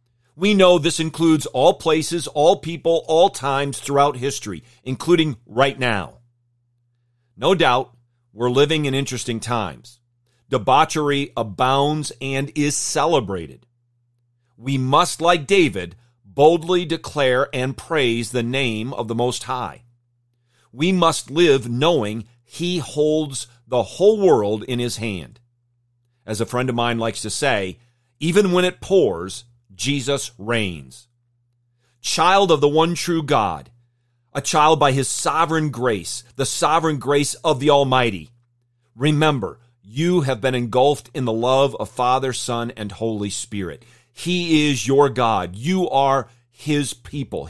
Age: 40-59